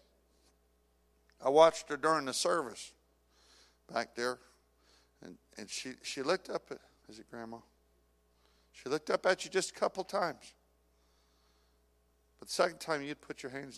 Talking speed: 150 wpm